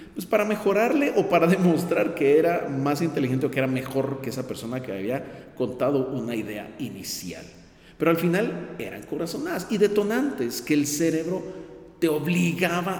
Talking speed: 160 wpm